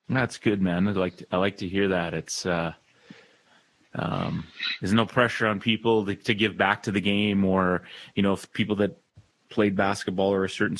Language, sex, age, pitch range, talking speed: English, male, 30-49, 95-105 Hz, 200 wpm